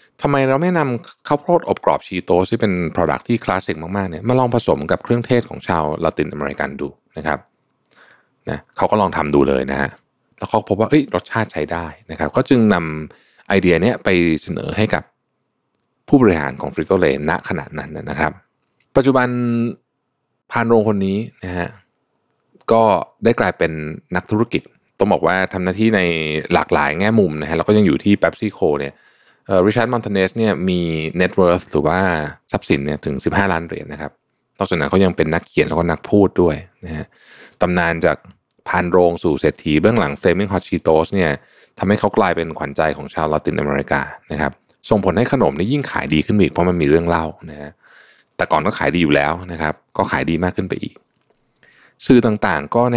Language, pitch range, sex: Thai, 80-110 Hz, male